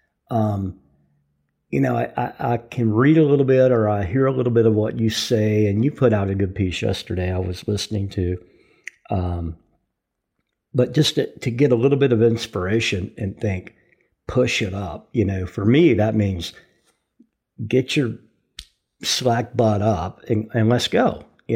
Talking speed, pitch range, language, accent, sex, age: 180 wpm, 100-120 Hz, English, American, male, 50-69